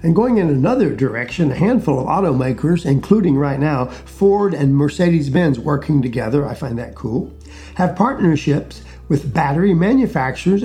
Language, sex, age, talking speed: English, male, 50-69, 145 wpm